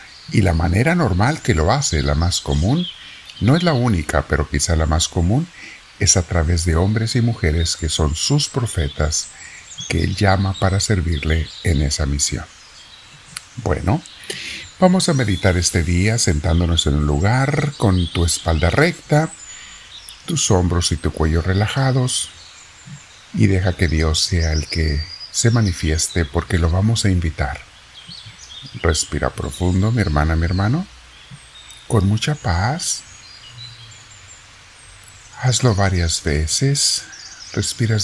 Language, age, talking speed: Spanish, 50-69, 135 wpm